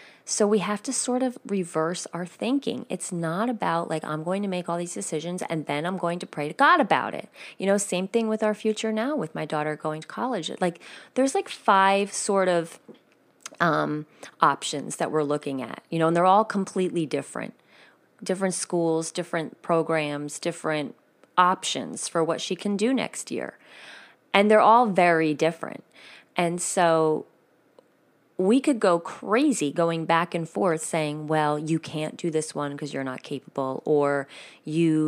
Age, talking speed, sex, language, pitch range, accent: 30-49, 180 wpm, female, English, 155-200 Hz, American